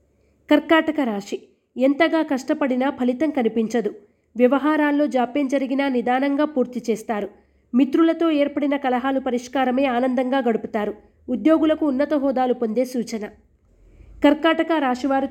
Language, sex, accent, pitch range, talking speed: Telugu, female, native, 245-295 Hz, 100 wpm